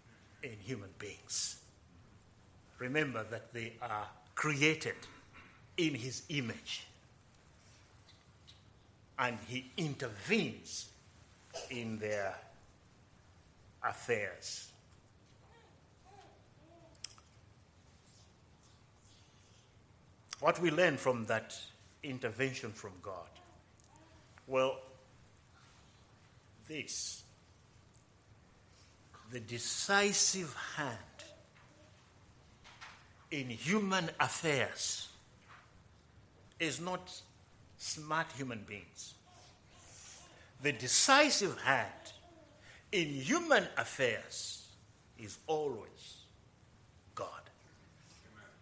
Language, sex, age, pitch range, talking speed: English, male, 60-79, 100-125 Hz, 60 wpm